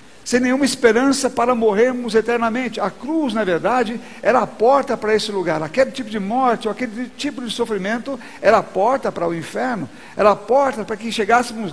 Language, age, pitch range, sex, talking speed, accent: Portuguese, 60-79, 225-260 Hz, male, 190 wpm, Brazilian